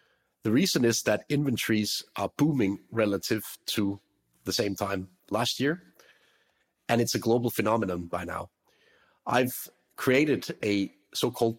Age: 40-59